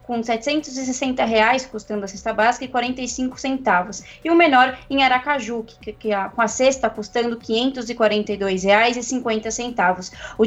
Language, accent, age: Portuguese, Brazilian, 20-39